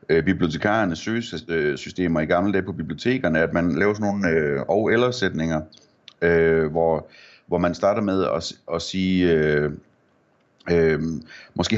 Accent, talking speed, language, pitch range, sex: native, 135 wpm, Danish, 80-105 Hz, male